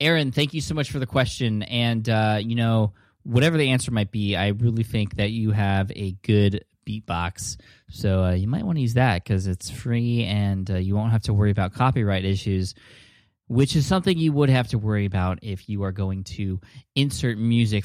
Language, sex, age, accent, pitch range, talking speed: English, male, 20-39, American, 105-130 Hz, 210 wpm